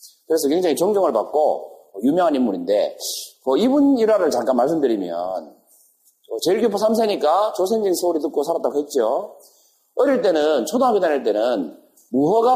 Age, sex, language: 40-59, male, Korean